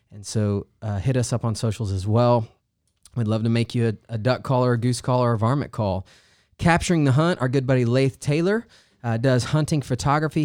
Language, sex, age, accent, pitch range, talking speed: English, male, 20-39, American, 105-130 Hz, 210 wpm